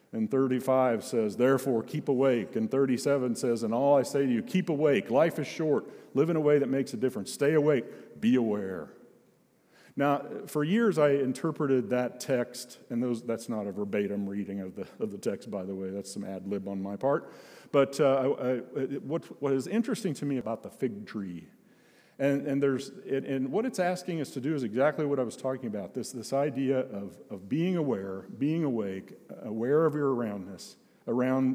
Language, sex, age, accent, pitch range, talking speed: English, male, 50-69, American, 120-150 Hz, 200 wpm